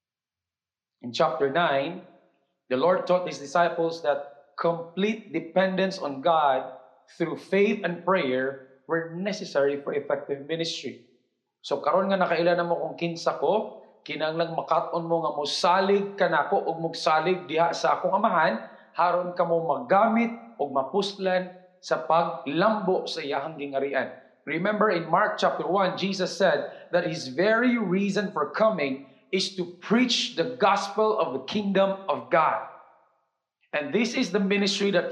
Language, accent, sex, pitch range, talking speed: English, Filipino, male, 165-215 Hz, 140 wpm